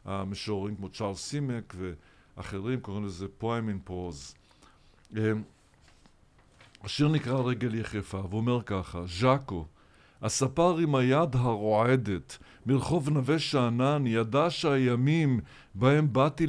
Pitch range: 115-150 Hz